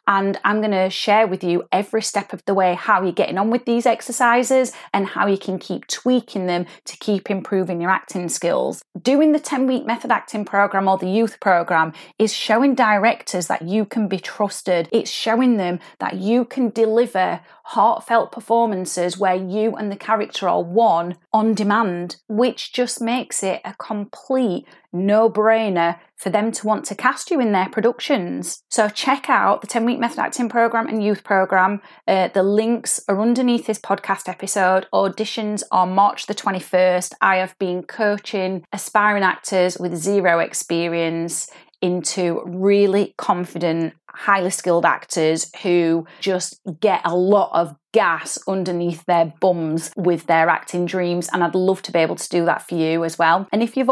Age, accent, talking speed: 30-49, British, 170 wpm